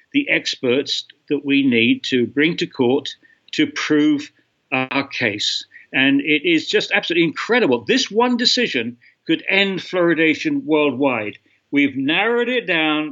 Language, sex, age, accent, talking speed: English, male, 60-79, British, 135 wpm